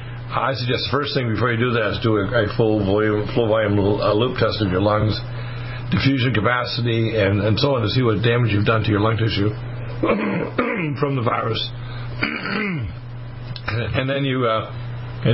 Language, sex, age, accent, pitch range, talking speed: English, male, 50-69, American, 105-120 Hz, 175 wpm